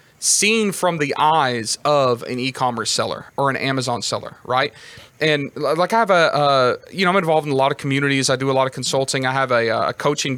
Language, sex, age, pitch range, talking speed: English, male, 30-49, 130-160 Hz, 225 wpm